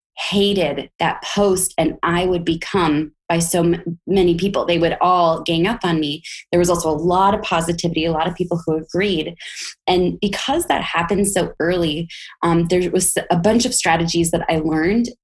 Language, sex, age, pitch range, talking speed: English, female, 20-39, 165-190 Hz, 185 wpm